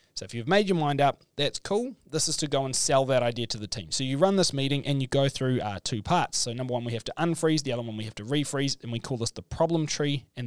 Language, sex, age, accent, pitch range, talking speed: English, male, 20-39, Australian, 120-150 Hz, 310 wpm